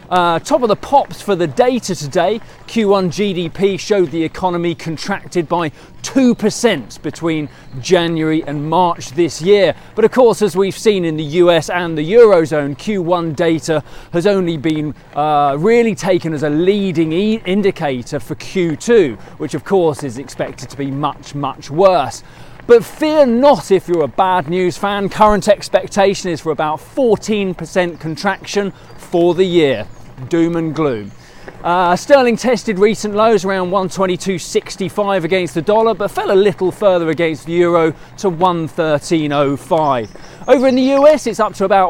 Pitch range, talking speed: 160-205 Hz, 155 wpm